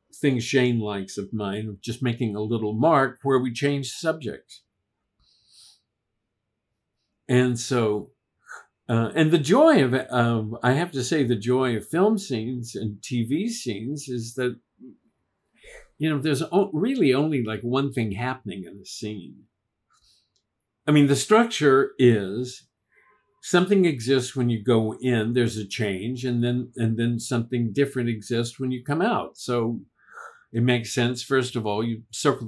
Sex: male